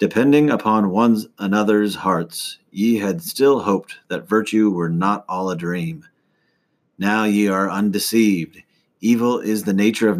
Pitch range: 90-105 Hz